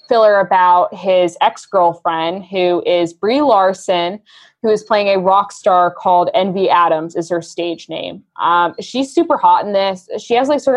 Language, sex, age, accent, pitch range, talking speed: English, female, 20-39, American, 175-215 Hz, 175 wpm